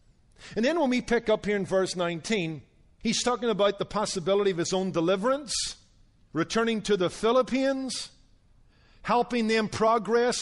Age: 50-69